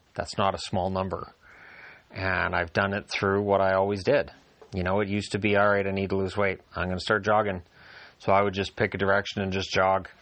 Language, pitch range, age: English, 95-110 Hz, 30-49